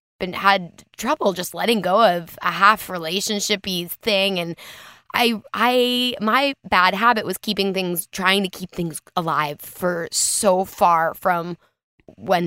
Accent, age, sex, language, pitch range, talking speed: American, 20-39, female, English, 170-205 Hz, 145 wpm